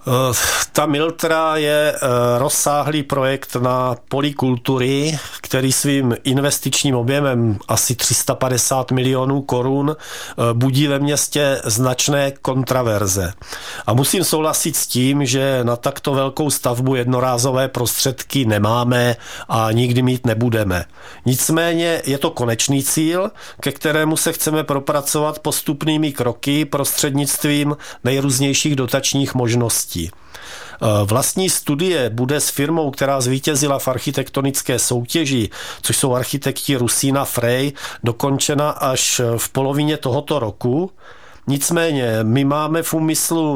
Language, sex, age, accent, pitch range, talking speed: Czech, male, 40-59, native, 125-150 Hz, 110 wpm